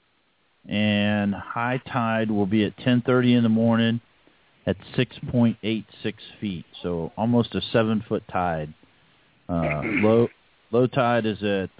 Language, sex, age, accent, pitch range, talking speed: English, male, 40-59, American, 95-115 Hz, 120 wpm